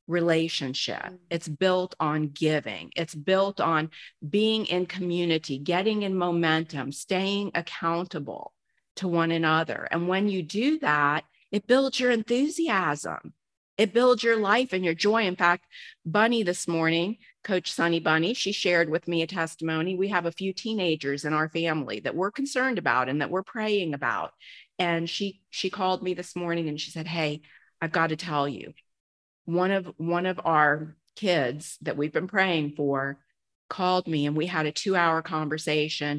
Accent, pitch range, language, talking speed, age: American, 155-185 Hz, English, 165 wpm, 40-59